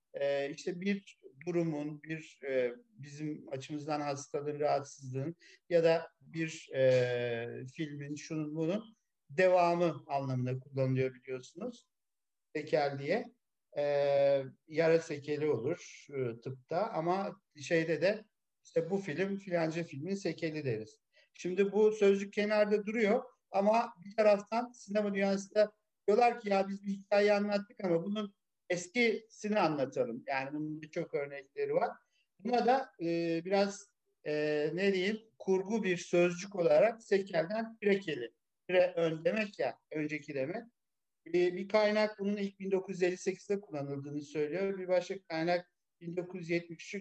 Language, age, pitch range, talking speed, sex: Turkish, 50-69, 150-205 Hz, 120 wpm, male